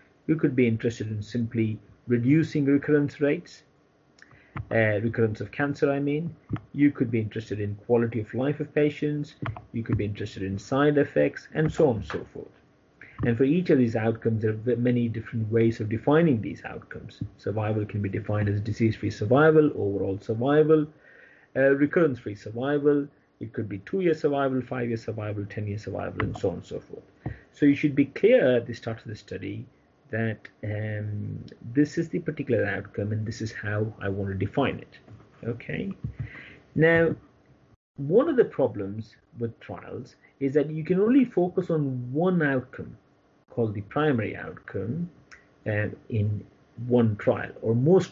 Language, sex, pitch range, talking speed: English, male, 105-145 Hz, 165 wpm